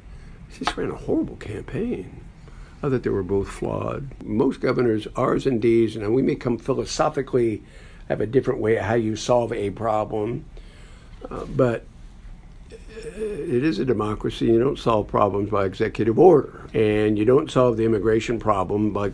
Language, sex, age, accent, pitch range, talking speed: English, male, 60-79, American, 100-130 Hz, 165 wpm